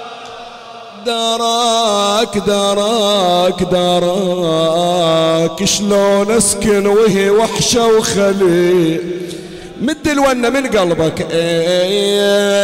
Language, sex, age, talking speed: Arabic, male, 50-69, 60 wpm